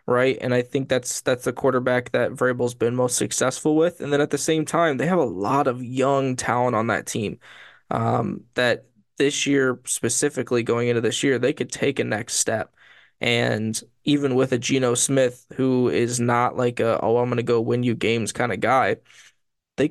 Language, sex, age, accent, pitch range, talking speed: English, male, 20-39, American, 125-140 Hz, 205 wpm